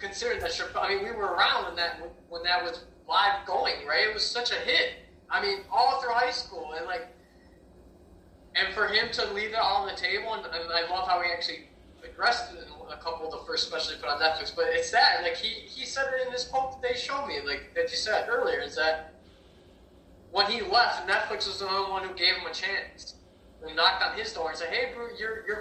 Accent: American